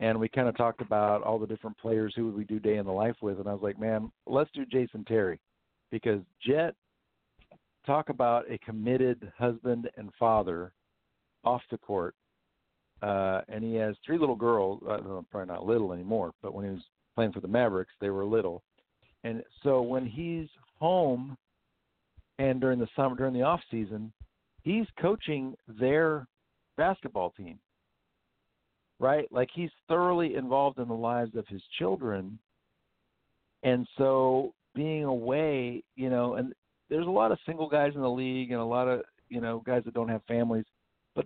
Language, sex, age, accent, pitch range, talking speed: English, male, 50-69, American, 110-135 Hz, 170 wpm